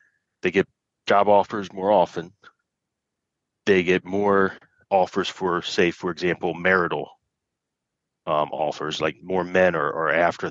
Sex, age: male, 30-49